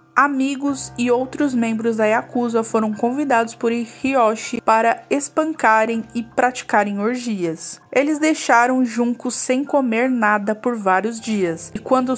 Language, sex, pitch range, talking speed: Portuguese, female, 215-260 Hz, 130 wpm